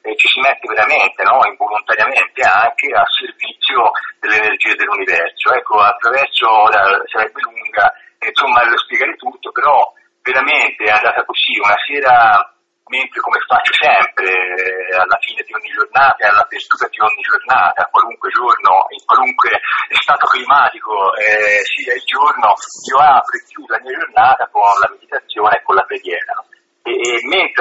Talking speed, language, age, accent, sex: 150 wpm, Italian, 40-59, native, male